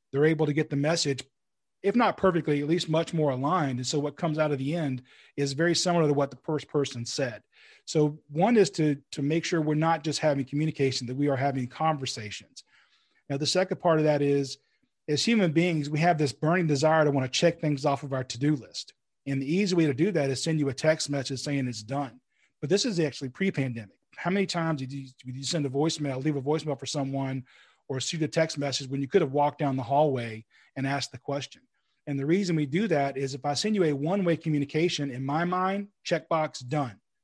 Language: English